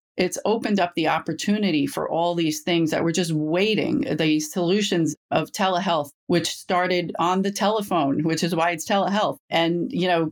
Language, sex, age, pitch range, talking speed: English, female, 40-59, 155-185 Hz, 175 wpm